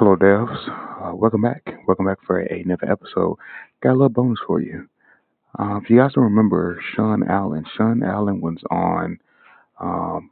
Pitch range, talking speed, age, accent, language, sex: 85-110 Hz, 170 wpm, 30-49, American, English, male